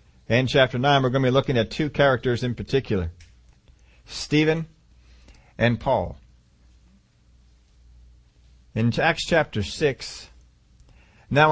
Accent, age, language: American, 40-59, English